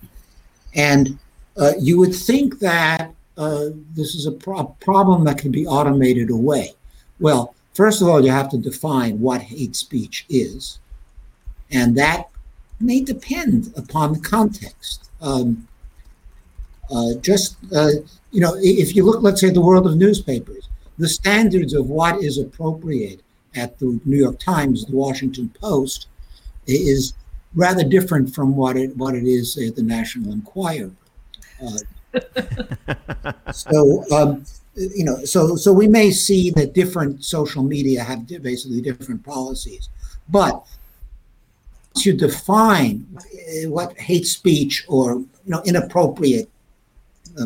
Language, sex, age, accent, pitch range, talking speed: English, male, 60-79, American, 125-180 Hz, 135 wpm